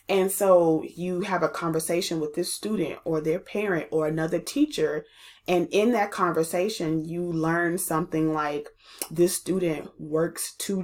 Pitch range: 160-185 Hz